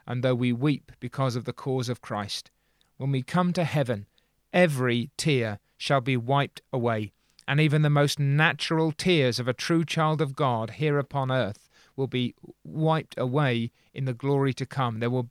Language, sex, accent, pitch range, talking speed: English, male, British, 120-145 Hz, 185 wpm